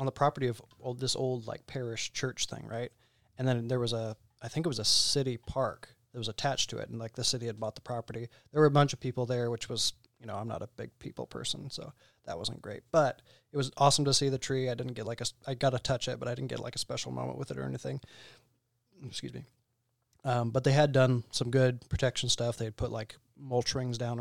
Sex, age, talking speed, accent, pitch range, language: male, 20-39, 265 wpm, American, 115-130 Hz, English